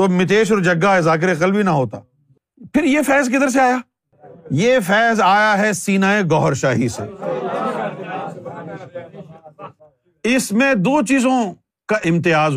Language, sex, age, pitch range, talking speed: Urdu, male, 50-69, 150-215 Hz, 135 wpm